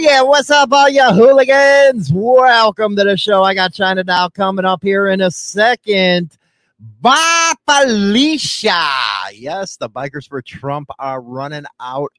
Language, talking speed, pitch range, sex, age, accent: English, 150 wpm, 110-155 Hz, male, 30-49, American